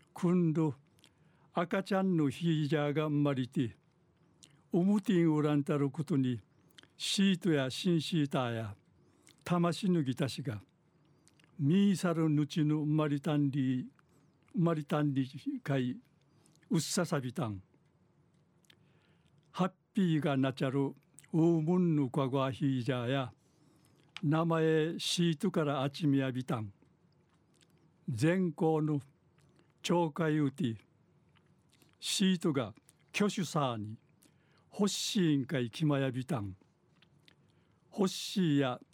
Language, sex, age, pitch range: Japanese, male, 60-79, 140-170 Hz